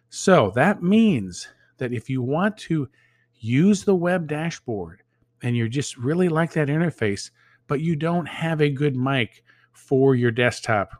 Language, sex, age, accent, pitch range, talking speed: English, male, 40-59, American, 115-150 Hz, 160 wpm